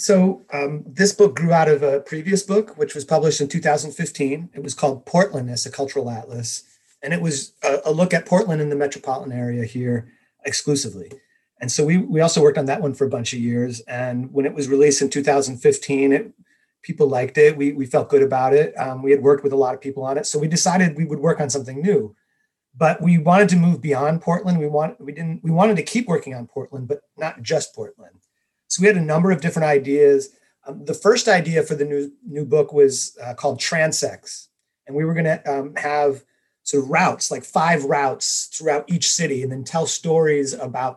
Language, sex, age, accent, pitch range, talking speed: English, male, 30-49, American, 135-170 Hz, 220 wpm